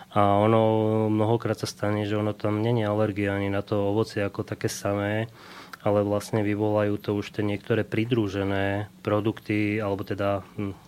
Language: Slovak